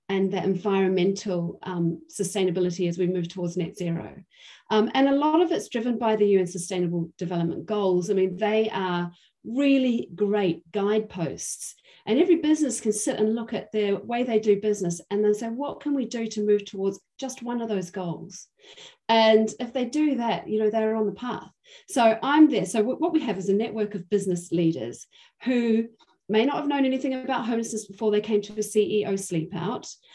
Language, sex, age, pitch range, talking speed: English, female, 40-59, 190-225 Hz, 195 wpm